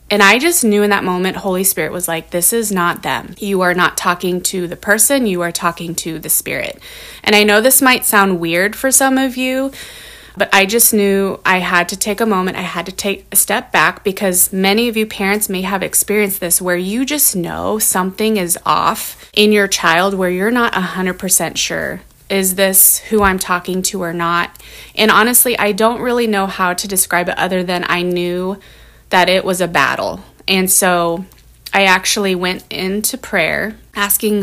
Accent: American